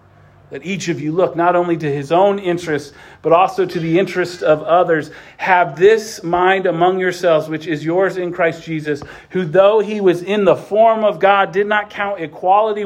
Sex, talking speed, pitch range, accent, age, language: male, 195 wpm, 130-180 Hz, American, 40-59, English